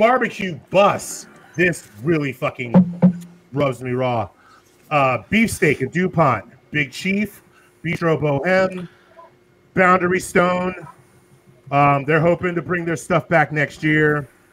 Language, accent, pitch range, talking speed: English, American, 130-180 Hz, 115 wpm